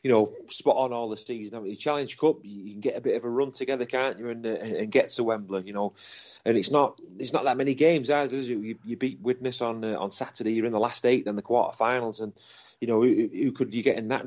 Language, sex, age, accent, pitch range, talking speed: English, male, 30-49, British, 105-125 Hz, 280 wpm